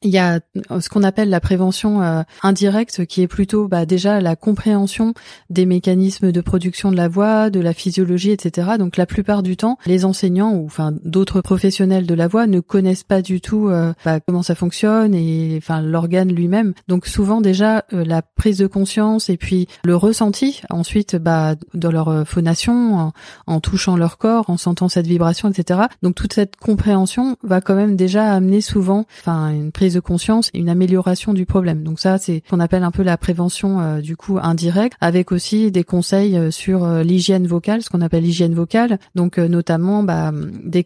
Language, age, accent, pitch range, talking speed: French, 30-49, French, 175-205 Hz, 195 wpm